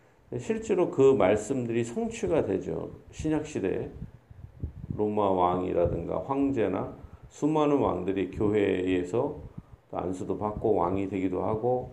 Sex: male